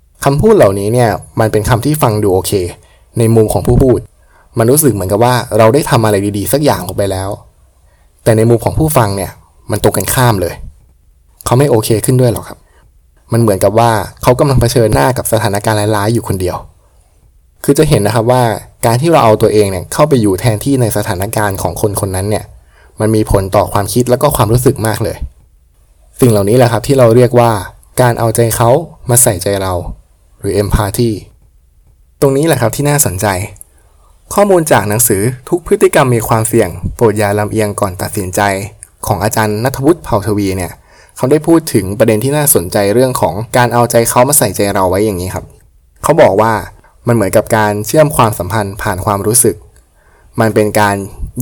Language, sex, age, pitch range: Thai, male, 20-39, 100-120 Hz